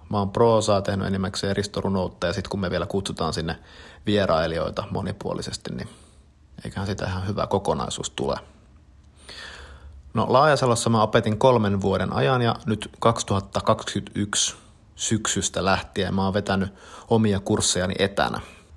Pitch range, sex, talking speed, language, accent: 90-115 Hz, male, 130 wpm, Finnish, native